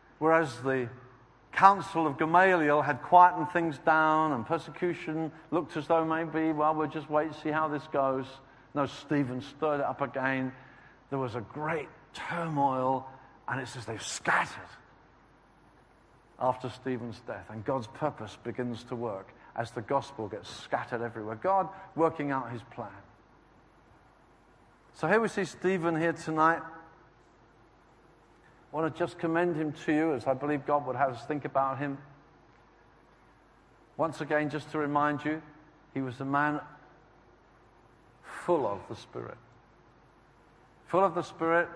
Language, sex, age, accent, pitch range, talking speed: English, male, 50-69, British, 130-160 Hz, 150 wpm